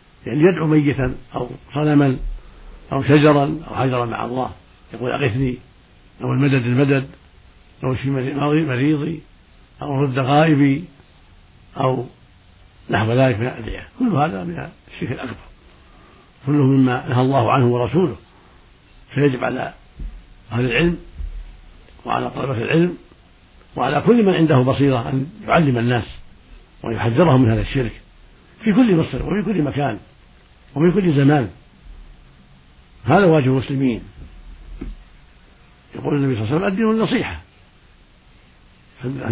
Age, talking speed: 70-89, 120 wpm